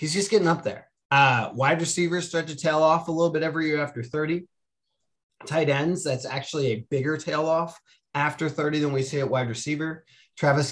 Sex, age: male, 30-49